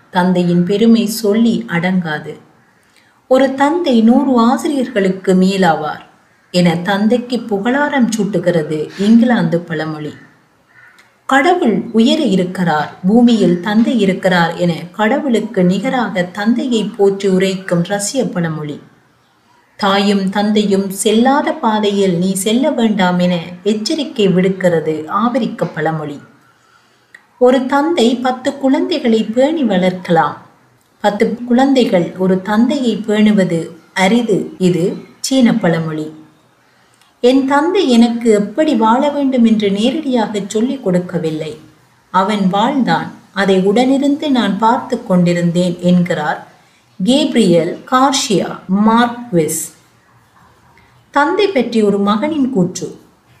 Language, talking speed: Tamil, 90 wpm